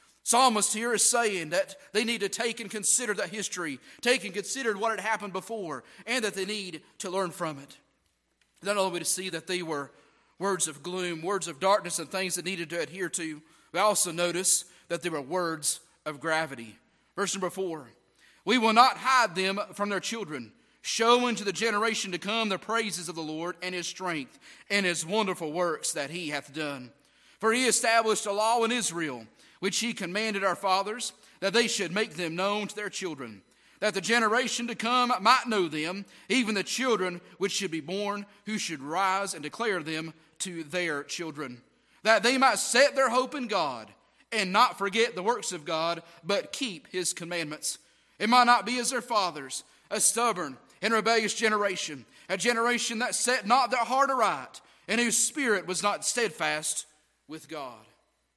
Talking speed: 190 wpm